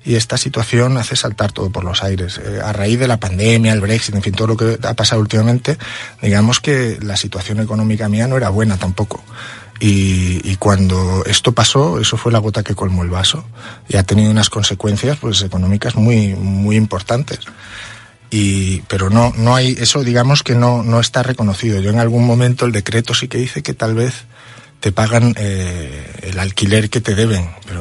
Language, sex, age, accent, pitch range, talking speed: Spanish, male, 30-49, Spanish, 100-115 Hz, 195 wpm